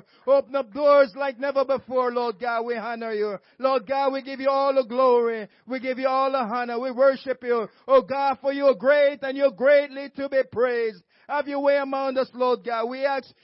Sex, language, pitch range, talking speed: male, English, 170-250 Hz, 220 wpm